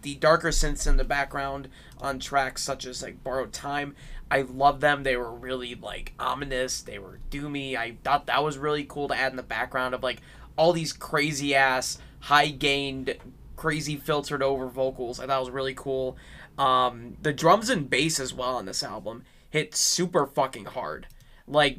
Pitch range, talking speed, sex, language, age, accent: 125-145 Hz, 185 wpm, male, English, 20-39, American